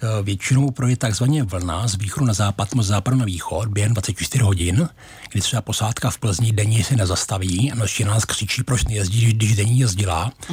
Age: 60-79